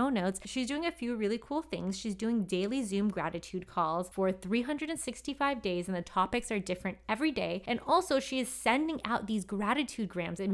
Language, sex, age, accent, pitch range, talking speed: English, female, 20-39, American, 185-240 Hz, 195 wpm